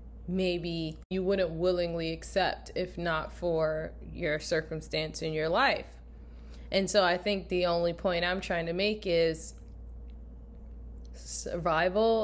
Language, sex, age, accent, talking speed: English, female, 20-39, American, 125 wpm